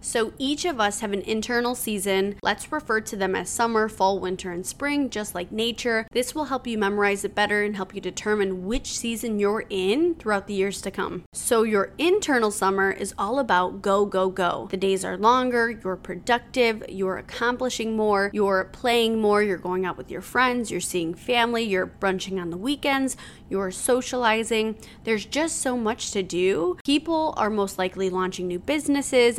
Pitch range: 195-250 Hz